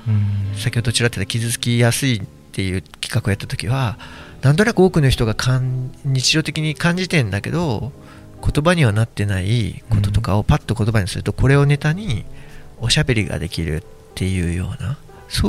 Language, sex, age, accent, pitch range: Japanese, male, 40-59, native, 110-145 Hz